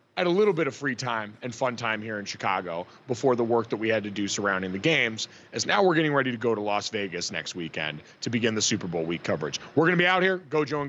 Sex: male